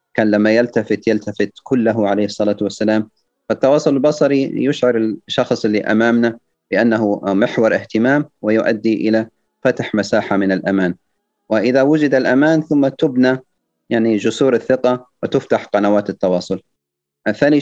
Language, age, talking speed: Arabic, 30-49, 120 wpm